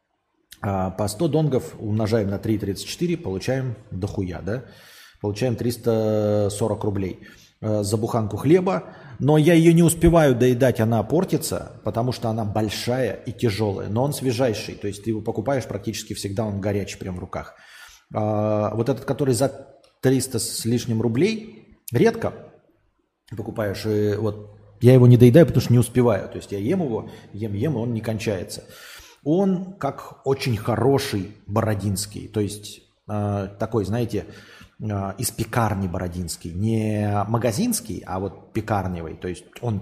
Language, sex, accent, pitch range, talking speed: Russian, male, native, 105-125 Hz, 140 wpm